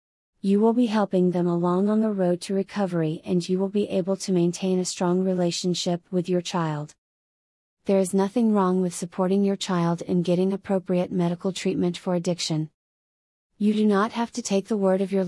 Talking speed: 195 wpm